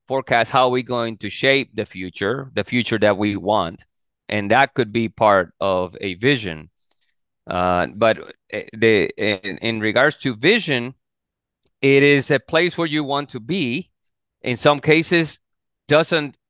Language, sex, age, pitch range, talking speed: English, male, 30-49, 105-135 Hz, 155 wpm